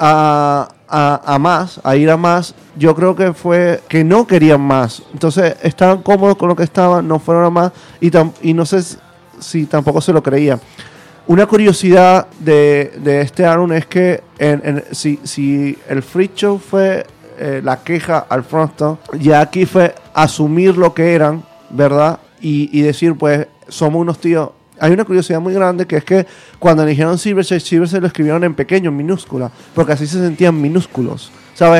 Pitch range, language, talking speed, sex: 150-180 Hz, Spanish, 185 wpm, male